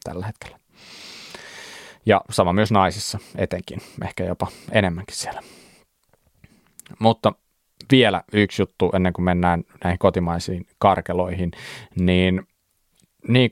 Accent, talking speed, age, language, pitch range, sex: native, 100 wpm, 20-39, Finnish, 90-110 Hz, male